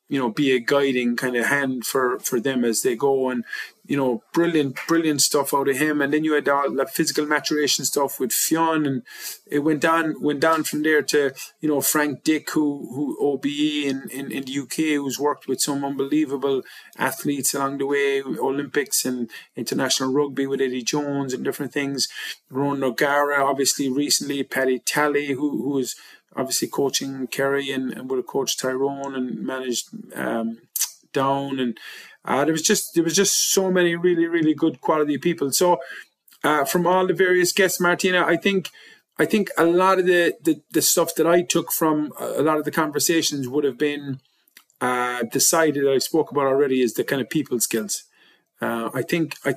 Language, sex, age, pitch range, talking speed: English, male, 30-49, 135-160 Hz, 190 wpm